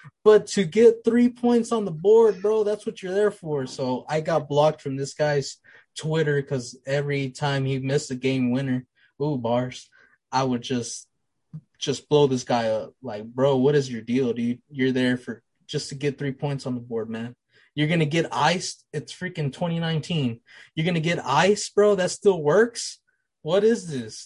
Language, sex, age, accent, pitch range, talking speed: English, male, 20-39, American, 130-175 Hz, 195 wpm